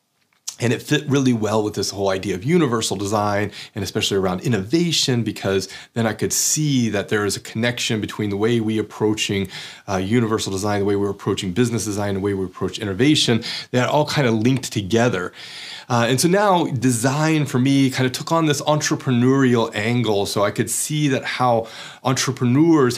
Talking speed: 190 wpm